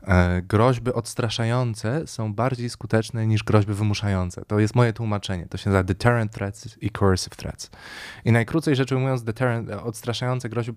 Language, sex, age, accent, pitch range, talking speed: Polish, male, 20-39, native, 100-120 Hz, 145 wpm